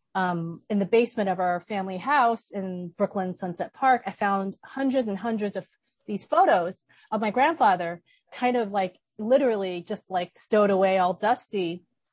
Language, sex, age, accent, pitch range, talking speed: English, female, 30-49, American, 185-220 Hz, 165 wpm